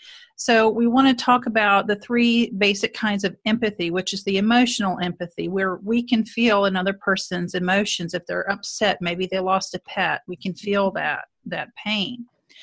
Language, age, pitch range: English, 40-59, 195-220 Hz